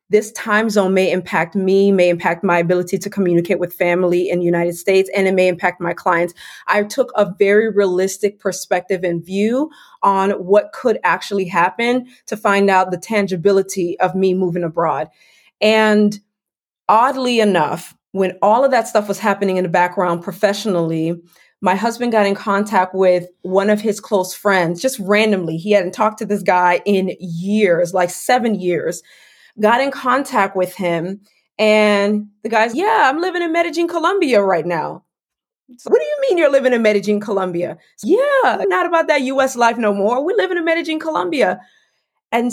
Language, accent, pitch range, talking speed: English, American, 185-235 Hz, 175 wpm